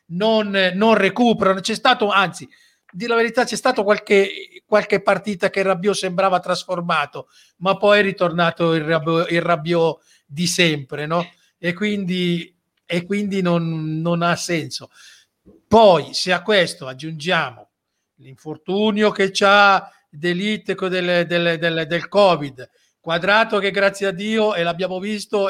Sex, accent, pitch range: male, native, 165-195 Hz